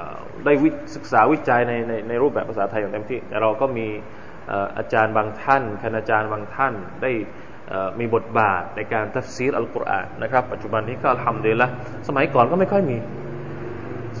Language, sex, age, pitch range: Thai, male, 20-39, 110-155 Hz